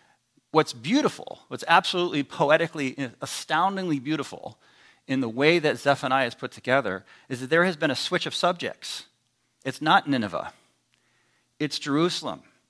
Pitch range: 145-185 Hz